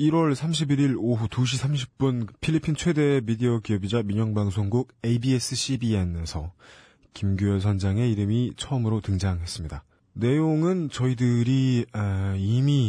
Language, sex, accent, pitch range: Korean, male, native, 95-125 Hz